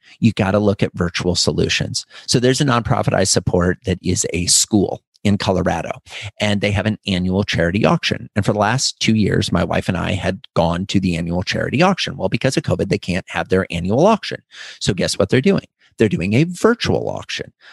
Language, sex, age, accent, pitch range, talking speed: English, male, 40-59, American, 100-140 Hz, 215 wpm